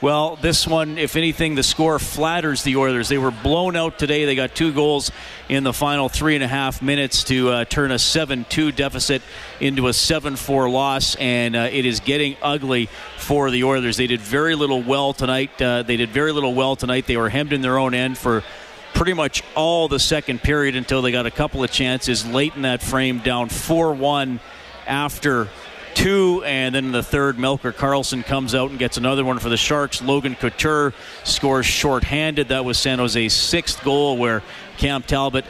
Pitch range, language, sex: 125-145 Hz, English, male